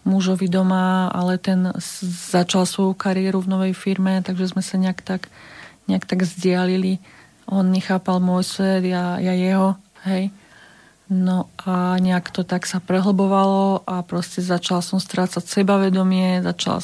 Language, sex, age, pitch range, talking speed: Slovak, female, 30-49, 180-195 Hz, 145 wpm